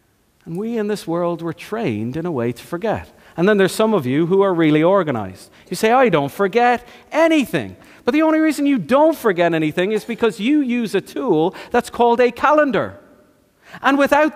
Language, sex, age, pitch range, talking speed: English, male, 40-59, 180-290 Hz, 200 wpm